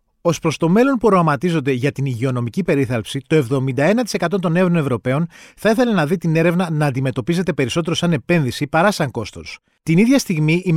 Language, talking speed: Greek, 180 wpm